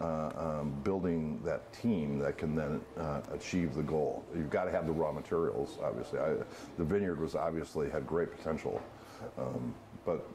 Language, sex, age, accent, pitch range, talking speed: English, male, 50-69, American, 80-100 Hz, 175 wpm